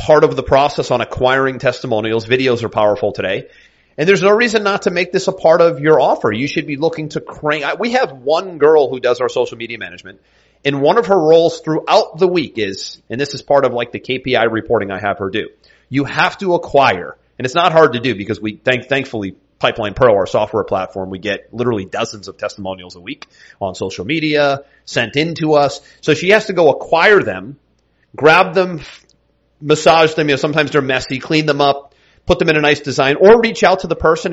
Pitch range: 130-165 Hz